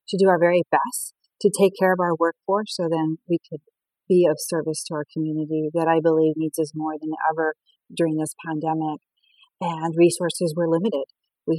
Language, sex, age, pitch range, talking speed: English, female, 40-59, 170-200 Hz, 190 wpm